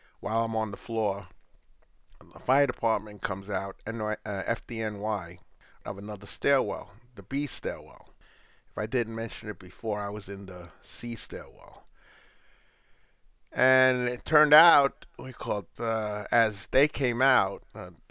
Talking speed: 145 wpm